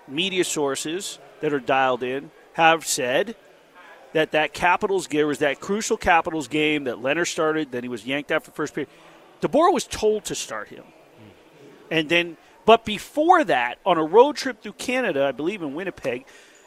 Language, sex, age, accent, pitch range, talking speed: English, male, 40-59, American, 155-210 Hz, 175 wpm